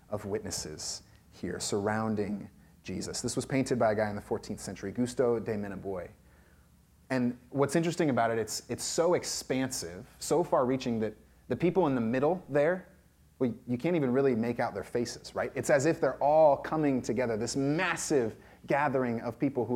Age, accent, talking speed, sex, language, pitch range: 30-49, American, 180 wpm, male, English, 95-130 Hz